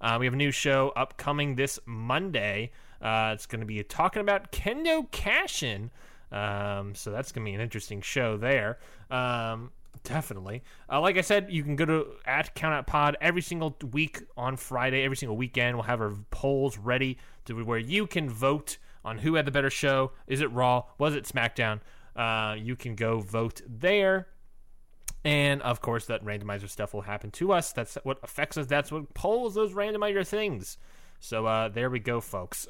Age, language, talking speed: 20-39, English, 190 wpm